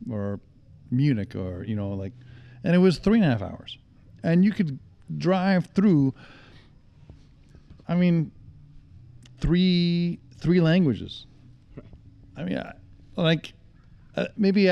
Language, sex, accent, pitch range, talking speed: English, male, American, 115-150 Hz, 120 wpm